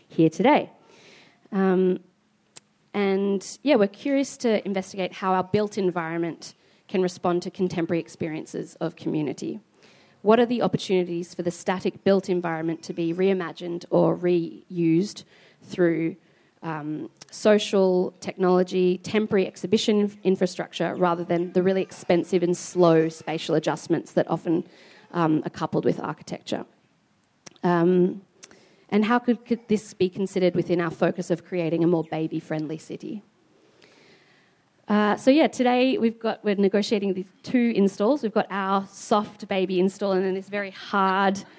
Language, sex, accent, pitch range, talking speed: English, female, Australian, 170-200 Hz, 135 wpm